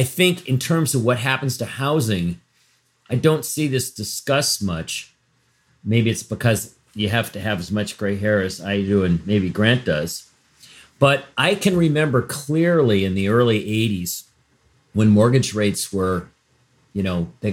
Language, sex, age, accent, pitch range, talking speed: English, male, 40-59, American, 110-140 Hz, 170 wpm